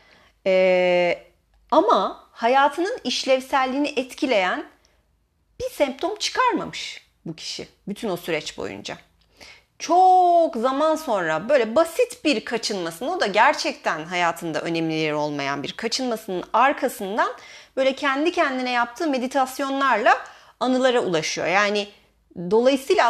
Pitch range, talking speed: 185-275 Hz, 105 wpm